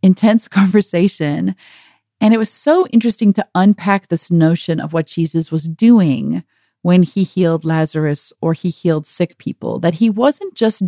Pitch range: 170-225 Hz